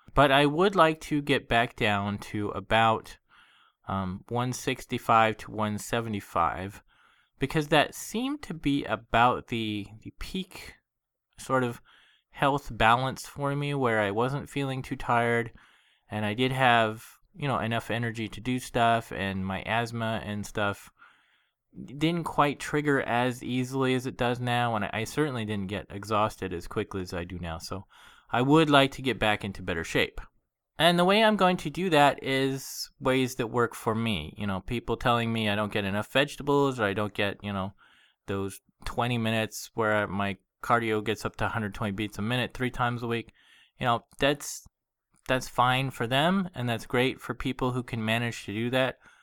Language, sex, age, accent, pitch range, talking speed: English, male, 20-39, American, 105-135 Hz, 180 wpm